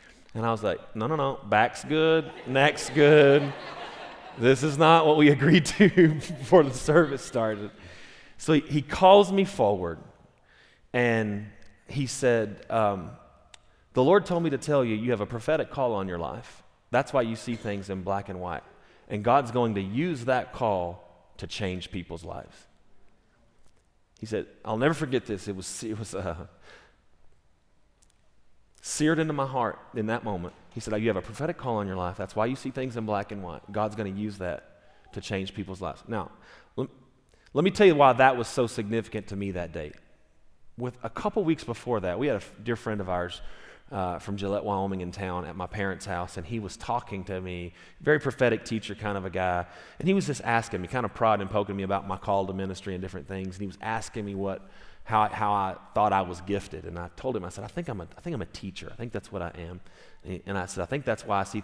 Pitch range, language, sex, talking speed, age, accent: 95-130 Hz, English, male, 220 wpm, 30-49, American